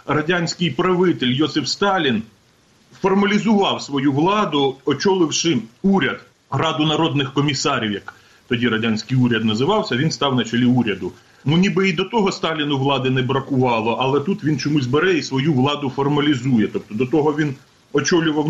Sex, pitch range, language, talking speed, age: male, 140-180 Hz, Ukrainian, 145 wpm, 30-49